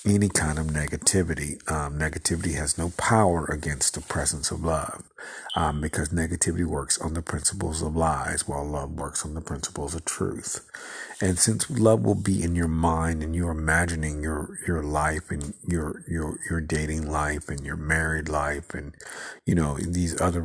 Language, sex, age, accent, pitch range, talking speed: English, male, 50-69, American, 75-90 Hz, 175 wpm